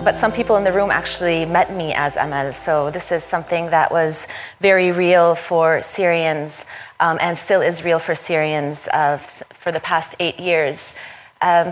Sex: female